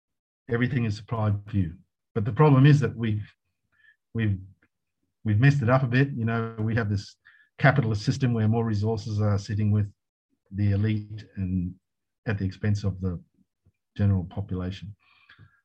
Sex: male